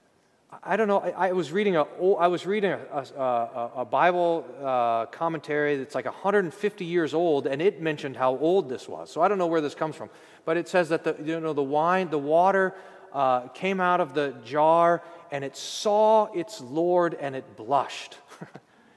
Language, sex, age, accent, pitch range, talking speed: English, male, 40-59, American, 145-200 Hz, 200 wpm